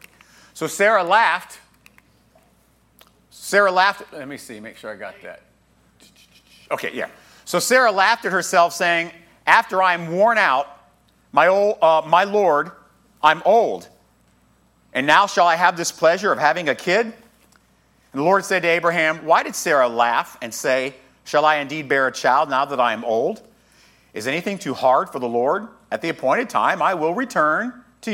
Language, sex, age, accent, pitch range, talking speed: English, male, 50-69, American, 135-215 Hz, 175 wpm